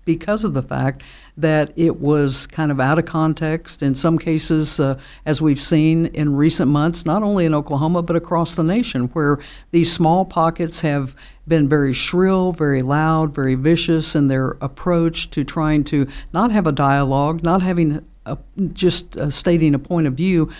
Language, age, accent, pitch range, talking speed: English, 60-79, American, 145-170 Hz, 180 wpm